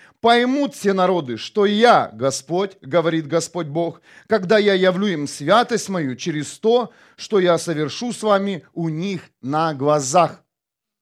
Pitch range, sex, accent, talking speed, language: 165-210 Hz, male, native, 140 wpm, Russian